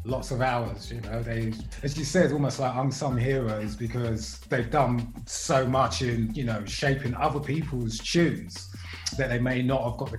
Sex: male